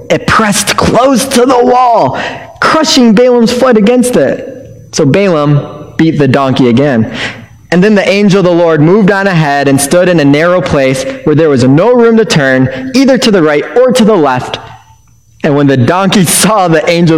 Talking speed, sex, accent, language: 190 wpm, male, American, English